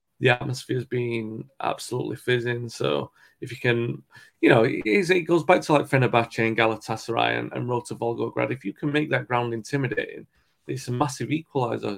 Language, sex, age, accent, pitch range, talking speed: English, male, 30-49, British, 115-130 Hz, 185 wpm